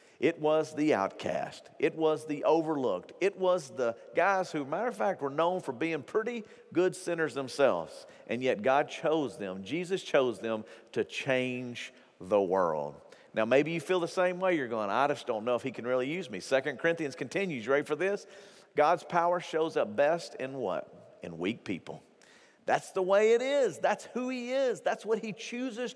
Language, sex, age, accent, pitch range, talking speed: English, male, 50-69, American, 140-210 Hz, 195 wpm